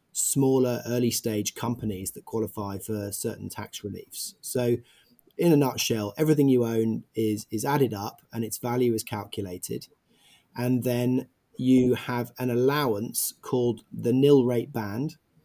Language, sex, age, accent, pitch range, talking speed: English, male, 30-49, British, 110-125 Hz, 145 wpm